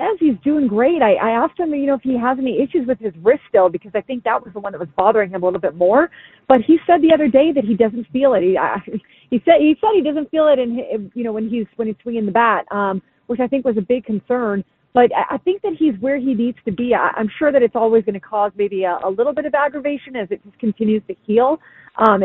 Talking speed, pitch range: 290 wpm, 205-270 Hz